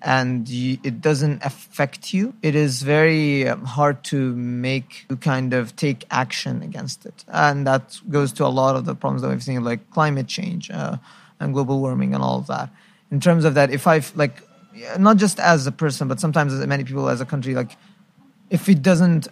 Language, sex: English, male